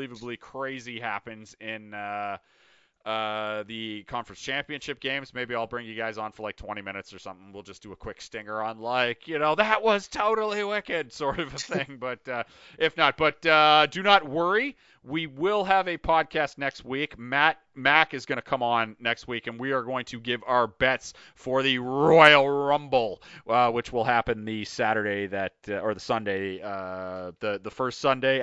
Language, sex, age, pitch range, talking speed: English, male, 30-49, 110-140 Hz, 195 wpm